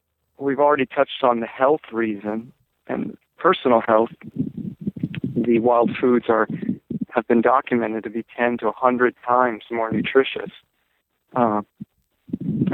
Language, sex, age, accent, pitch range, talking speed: English, male, 40-59, American, 110-130 Hz, 125 wpm